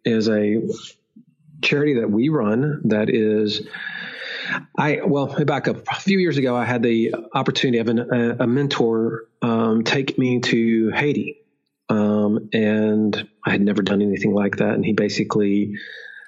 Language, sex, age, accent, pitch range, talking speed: English, male, 40-59, American, 105-125 Hz, 150 wpm